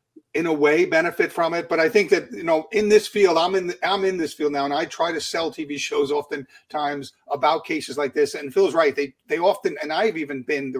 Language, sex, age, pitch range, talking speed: English, male, 40-59, 140-220 Hz, 255 wpm